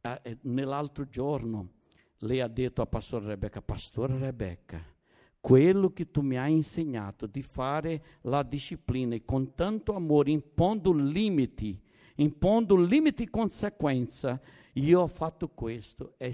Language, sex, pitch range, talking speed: Italian, male, 130-190 Hz, 130 wpm